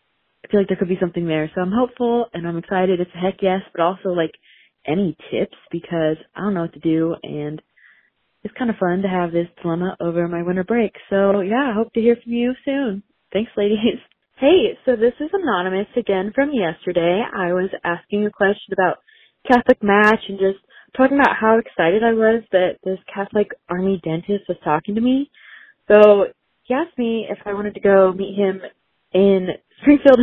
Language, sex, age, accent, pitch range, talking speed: English, female, 20-39, American, 180-245 Hz, 200 wpm